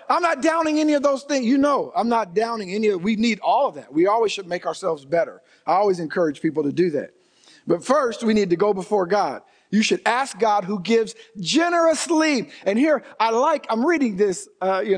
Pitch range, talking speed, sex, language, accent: 165-215 Hz, 225 wpm, male, English, American